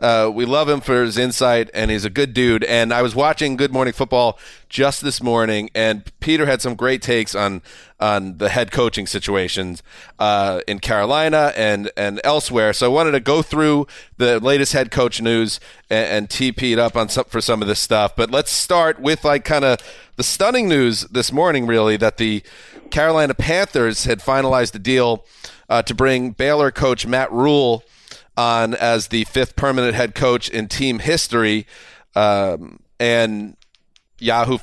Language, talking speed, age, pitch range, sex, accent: English, 180 wpm, 30-49, 115-140 Hz, male, American